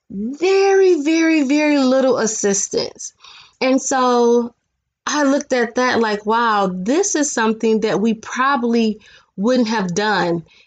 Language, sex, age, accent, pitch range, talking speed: English, female, 20-39, American, 180-235 Hz, 125 wpm